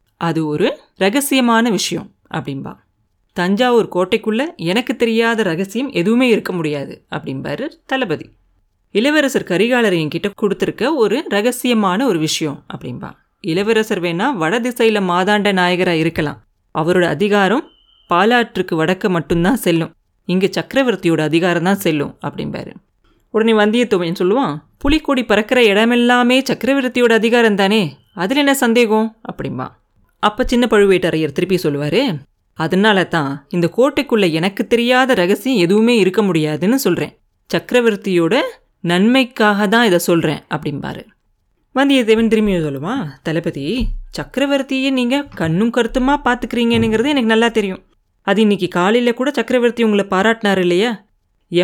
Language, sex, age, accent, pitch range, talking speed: Tamil, female, 30-49, native, 175-240 Hz, 115 wpm